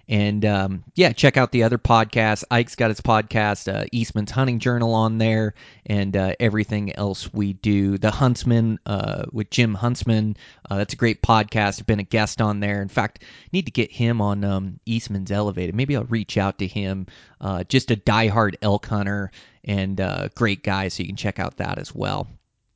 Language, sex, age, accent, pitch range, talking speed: English, male, 30-49, American, 105-125 Hz, 200 wpm